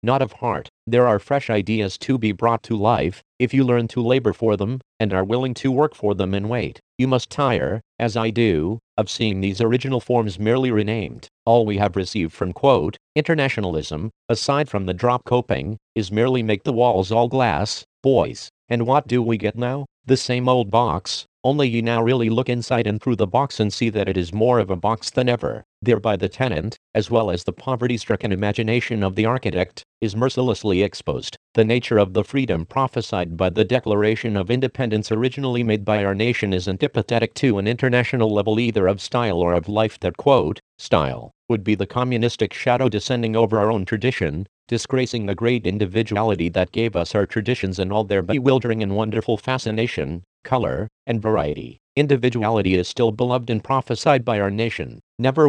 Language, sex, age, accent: English, male, 50-69, American